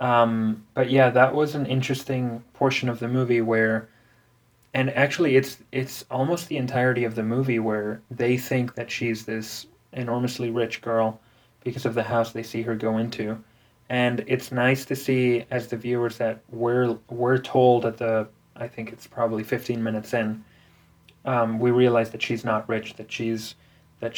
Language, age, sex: English, 20-39, male